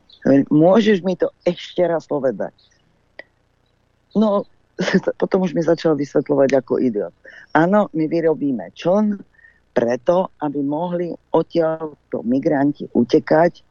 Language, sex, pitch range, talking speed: Slovak, female, 130-165 Hz, 105 wpm